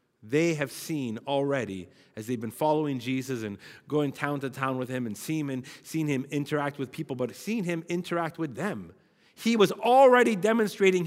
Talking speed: 180 wpm